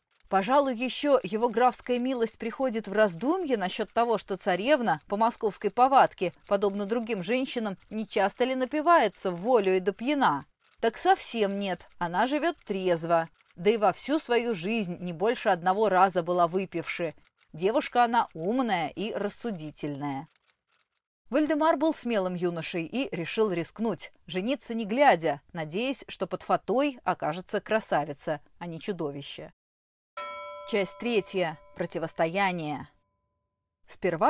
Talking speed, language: 125 wpm, Russian